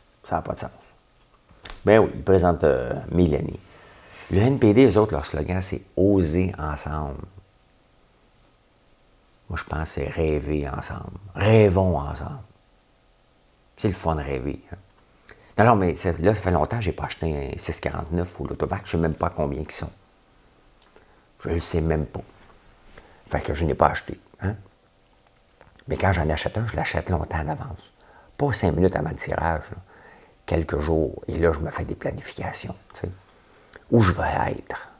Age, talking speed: 50-69, 185 wpm